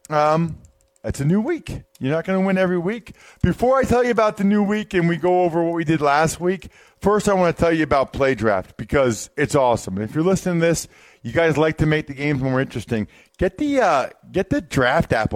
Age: 40-59